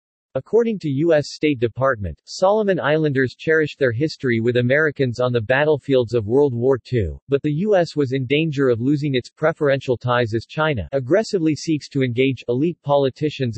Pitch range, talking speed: 120-150 Hz, 170 wpm